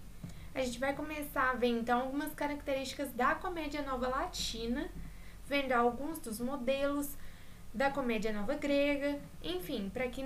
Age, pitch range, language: 10-29, 245-285 Hz, Portuguese